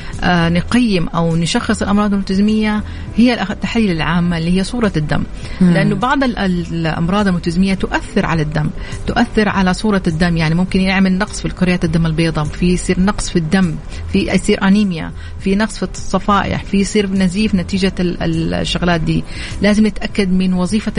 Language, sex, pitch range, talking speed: Arabic, female, 170-205 Hz, 150 wpm